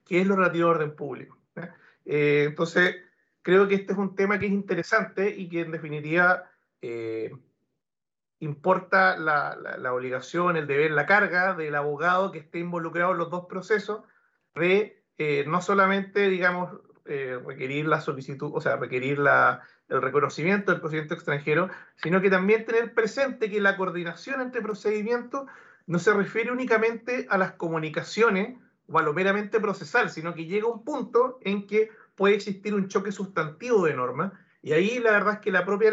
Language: English